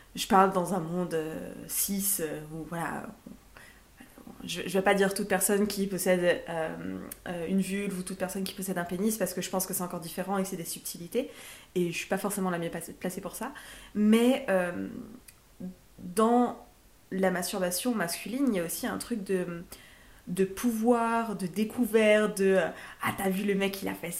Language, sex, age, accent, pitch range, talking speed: French, female, 20-39, French, 180-220 Hz, 205 wpm